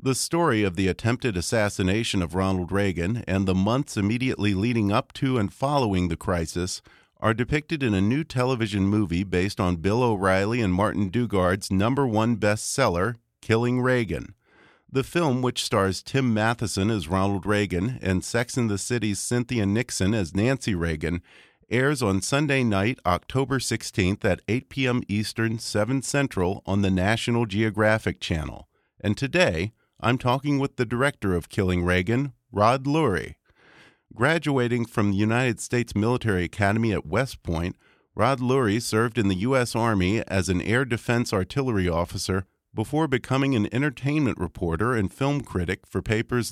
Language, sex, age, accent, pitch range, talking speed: English, male, 50-69, American, 95-125 Hz, 155 wpm